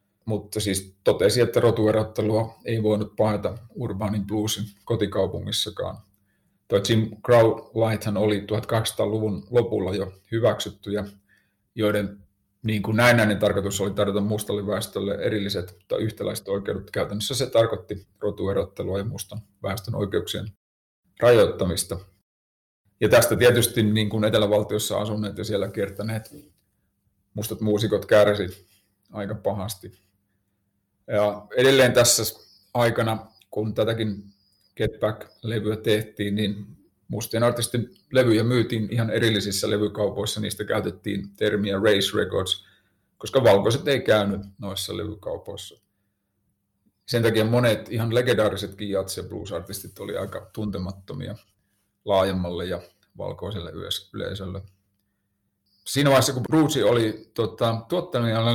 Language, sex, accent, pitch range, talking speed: Finnish, male, native, 100-110 Hz, 105 wpm